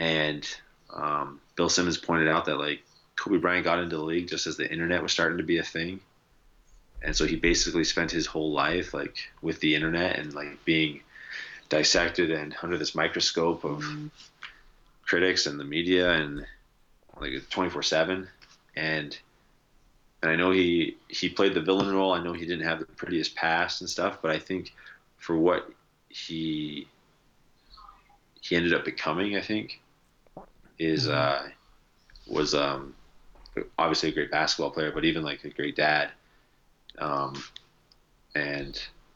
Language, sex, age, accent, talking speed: English, male, 30-49, American, 155 wpm